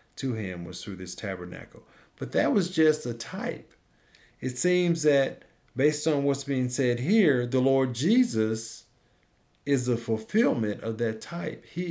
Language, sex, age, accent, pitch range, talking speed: English, male, 50-69, American, 105-135 Hz, 150 wpm